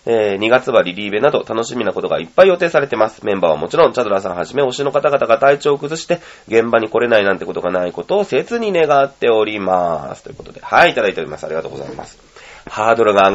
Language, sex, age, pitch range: Japanese, male, 30-49, 105-175 Hz